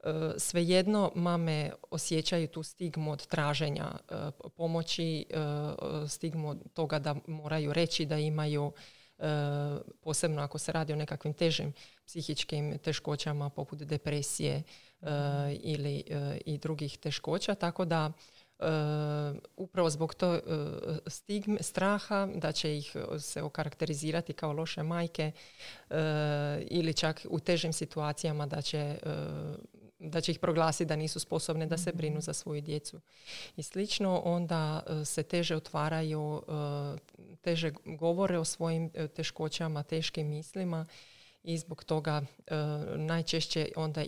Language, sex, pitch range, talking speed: Croatian, female, 150-165 Hz, 115 wpm